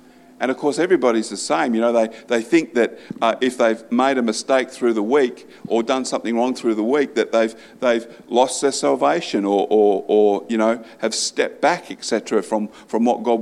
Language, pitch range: English, 105-130 Hz